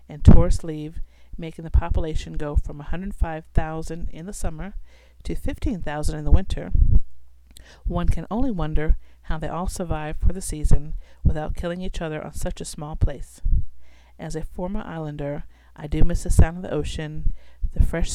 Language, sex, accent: English, female, American